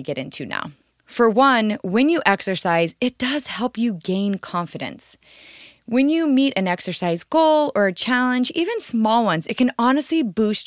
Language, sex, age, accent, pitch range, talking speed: English, female, 30-49, American, 190-255 Hz, 170 wpm